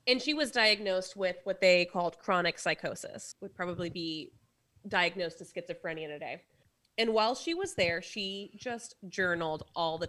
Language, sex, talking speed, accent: English, female, 160 wpm, American